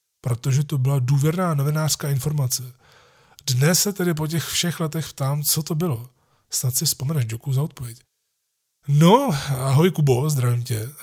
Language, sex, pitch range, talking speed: Czech, male, 120-145 Hz, 150 wpm